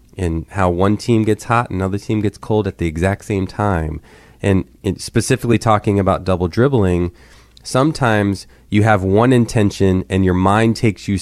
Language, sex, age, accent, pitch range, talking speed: English, male, 20-39, American, 95-120 Hz, 170 wpm